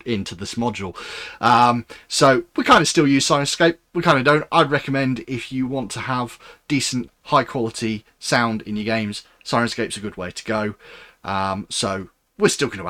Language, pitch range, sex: English, 105-140 Hz, male